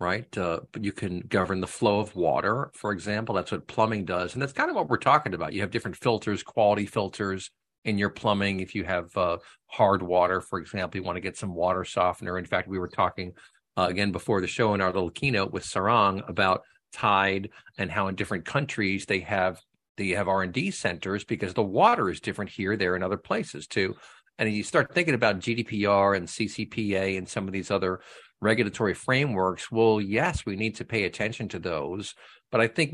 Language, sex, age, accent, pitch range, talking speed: English, male, 50-69, American, 95-110 Hz, 210 wpm